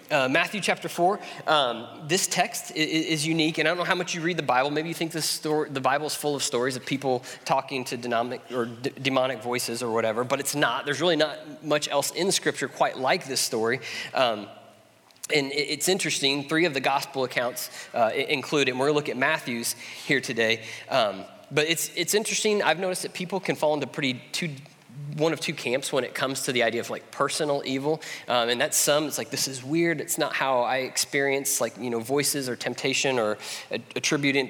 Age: 20-39